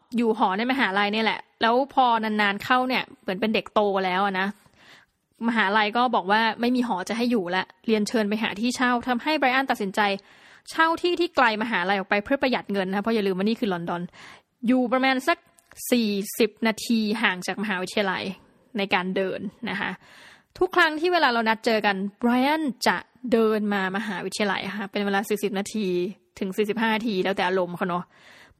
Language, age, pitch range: Thai, 20-39, 200-250 Hz